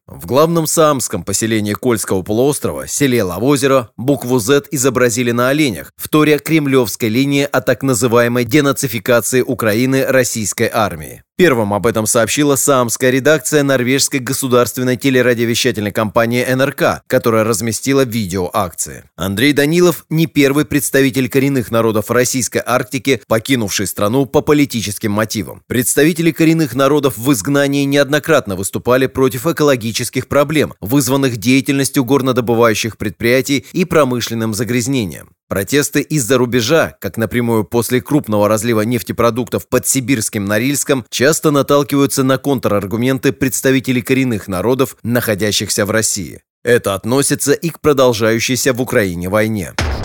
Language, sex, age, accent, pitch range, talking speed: Russian, male, 30-49, native, 115-140 Hz, 120 wpm